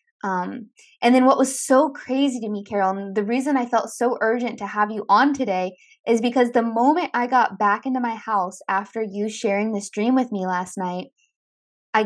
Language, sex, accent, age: English, female, American, 20-39